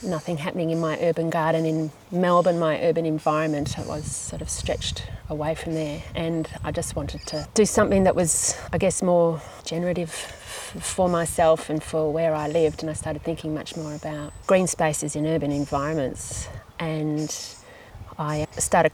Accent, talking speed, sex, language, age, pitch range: Australian, 170 wpm, female, English, 30-49, 150-170 Hz